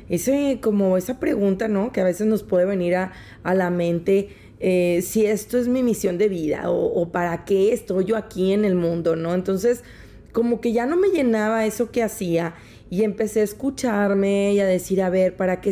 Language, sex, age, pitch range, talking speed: Spanish, female, 30-49, 180-220 Hz, 210 wpm